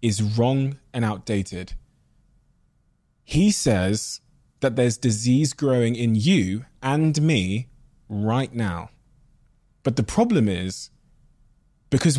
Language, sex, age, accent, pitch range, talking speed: English, male, 20-39, British, 105-135 Hz, 105 wpm